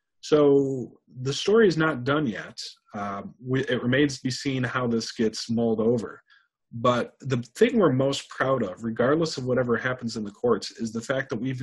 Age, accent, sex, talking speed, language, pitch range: 30-49, American, male, 190 wpm, English, 110-135 Hz